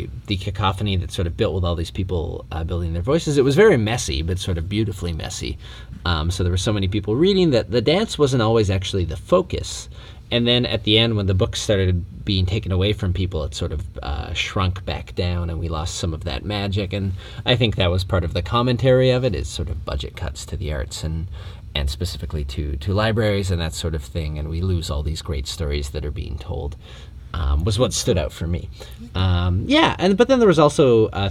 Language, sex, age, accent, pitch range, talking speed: English, male, 30-49, American, 85-105 Hz, 235 wpm